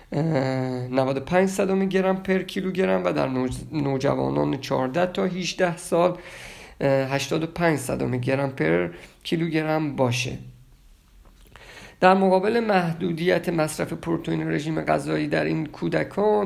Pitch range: 120-175 Hz